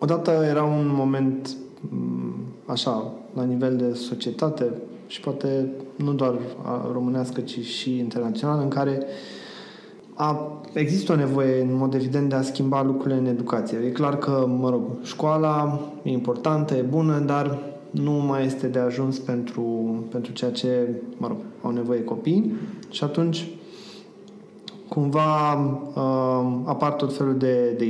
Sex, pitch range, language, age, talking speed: male, 125-155 Hz, Romanian, 20-39, 140 wpm